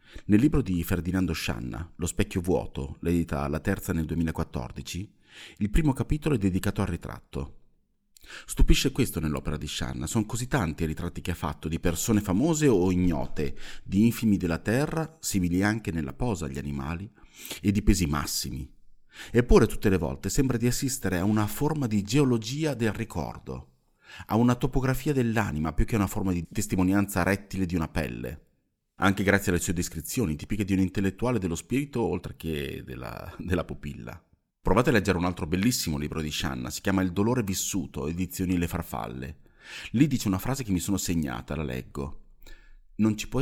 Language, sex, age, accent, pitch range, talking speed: Italian, male, 30-49, native, 80-105 Hz, 175 wpm